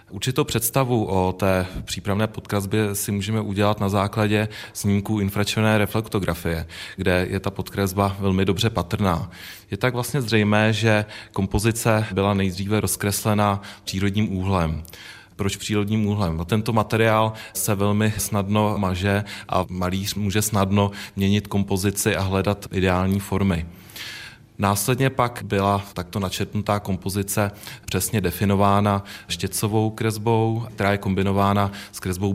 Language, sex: Czech, male